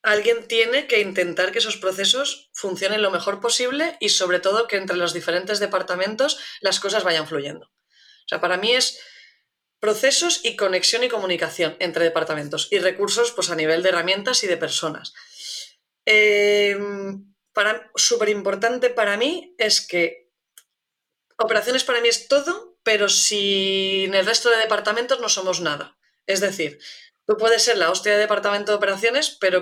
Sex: female